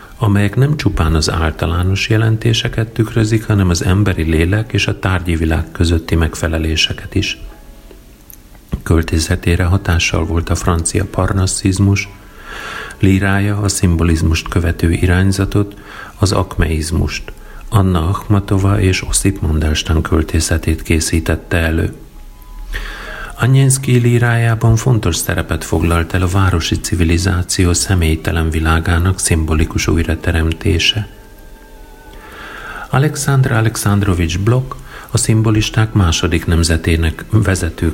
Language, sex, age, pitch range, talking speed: Hungarian, male, 40-59, 80-105 Hz, 95 wpm